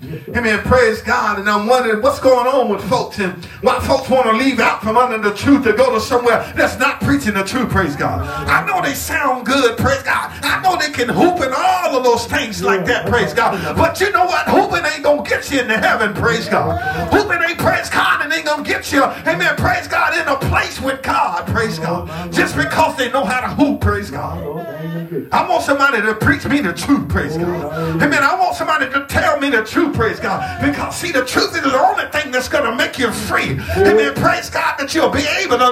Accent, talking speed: American, 235 wpm